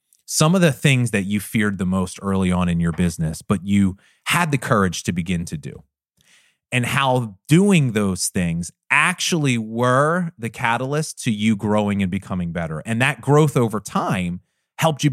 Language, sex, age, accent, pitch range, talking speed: English, male, 30-49, American, 105-160 Hz, 180 wpm